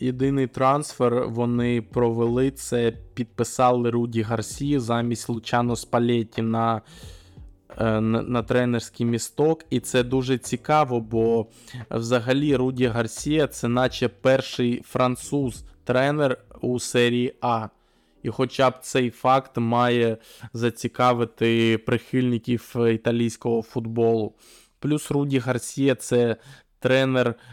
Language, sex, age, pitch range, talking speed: Ukrainian, male, 20-39, 115-130 Hz, 100 wpm